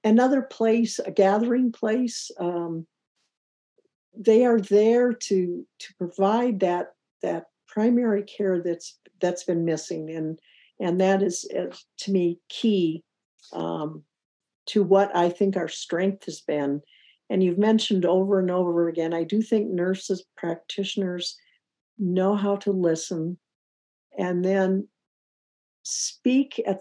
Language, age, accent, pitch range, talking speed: English, 60-79, American, 165-205 Hz, 125 wpm